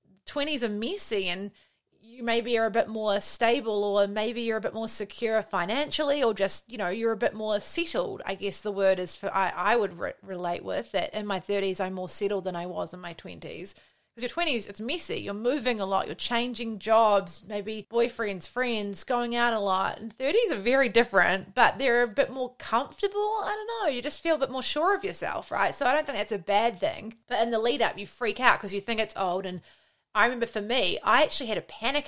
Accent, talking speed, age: Australian, 235 wpm, 20-39